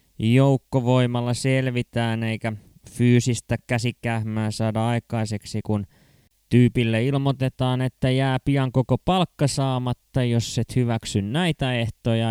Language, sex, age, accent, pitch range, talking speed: Finnish, male, 20-39, native, 110-130 Hz, 100 wpm